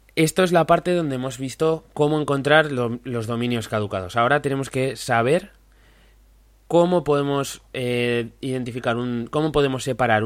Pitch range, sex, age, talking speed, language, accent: 115-130 Hz, male, 20-39, 145 wpm, Spanish, Spanish